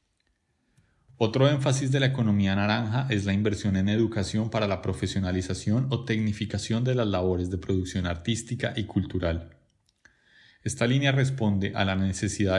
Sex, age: male, 30-49